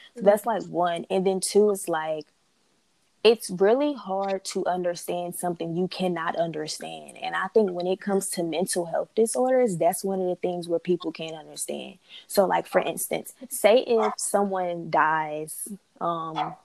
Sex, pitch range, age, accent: female, 170-200 Hz, 20-39, American